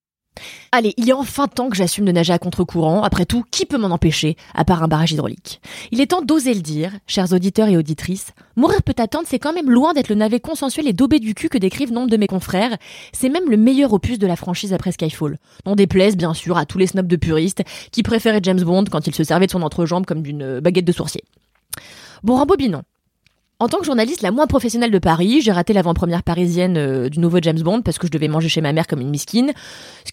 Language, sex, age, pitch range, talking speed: French, female, 20-39, 170-240 Hz, 245 wpm